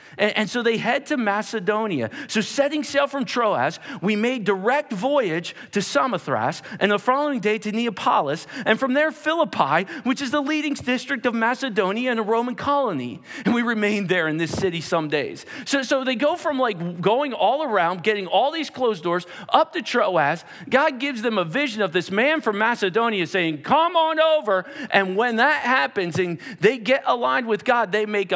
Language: English